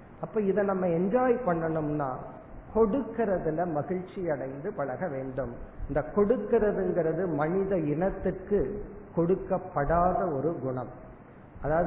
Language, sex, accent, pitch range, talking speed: Tamil, male, native, 145-195 Hz, 90 wpm